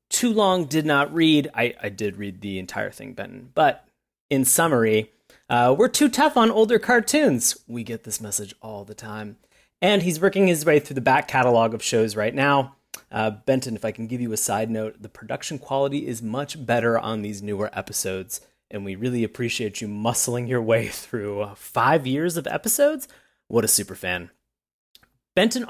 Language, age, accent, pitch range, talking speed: English, 30-49, American, 115-165 Hz, 190 wpm